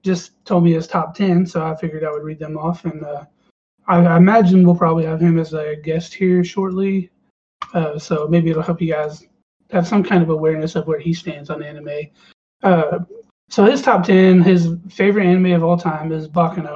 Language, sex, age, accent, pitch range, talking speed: English, male, 20-39, American, 160-180 Hz, 210 wpm